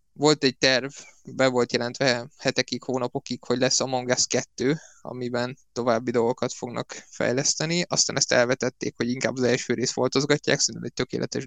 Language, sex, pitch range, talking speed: Hungarian, male, 125-145 Hz, 160 wpm